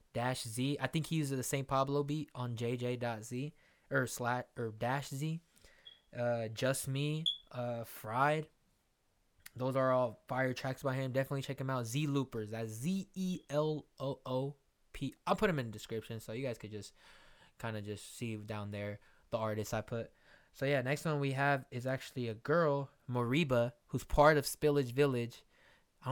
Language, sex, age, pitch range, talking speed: English, male, 10-29, 115-140 Hz, 170 wpm